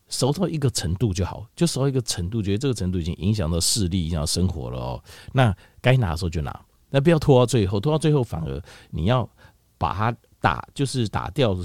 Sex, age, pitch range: male, 50-69, 85-125 Hz